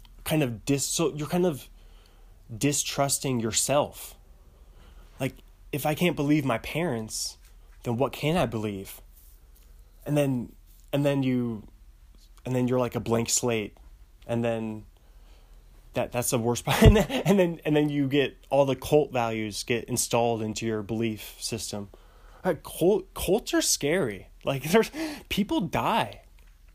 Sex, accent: male, American